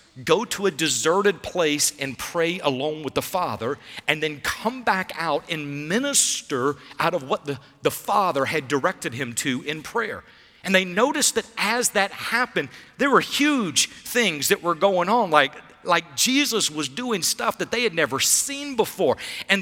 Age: 50-69